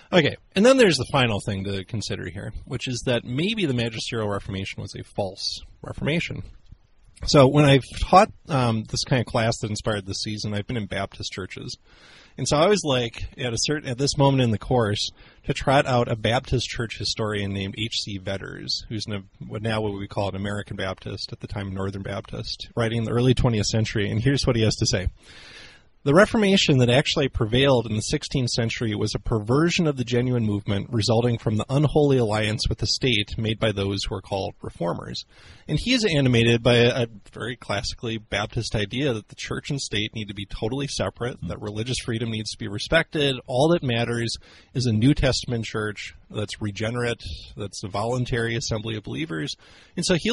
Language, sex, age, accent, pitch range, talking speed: English, male, 30-49, American, 105-135 Hz, 200 wpm